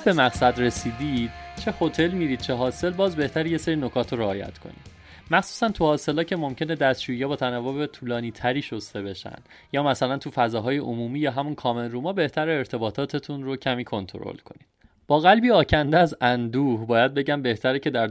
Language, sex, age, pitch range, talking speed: Persian, male, 30-49, 115-155 Hz, 180 wpm